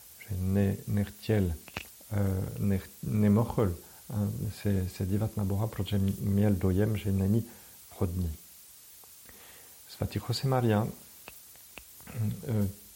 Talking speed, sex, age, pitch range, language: 95 wpm, male, 50-69, 95-115 Hz, Czech